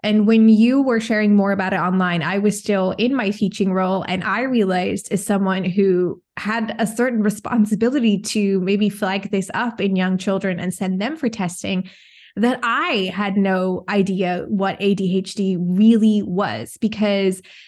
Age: 20-39